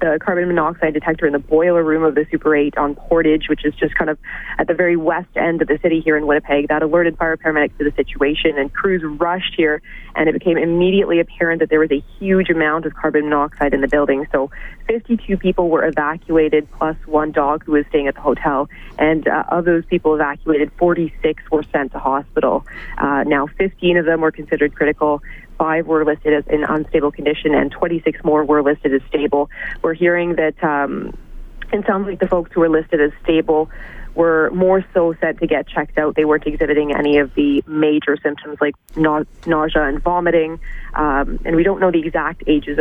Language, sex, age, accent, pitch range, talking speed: English, female, 30-49, American, 150-165 Hz, 205 wpm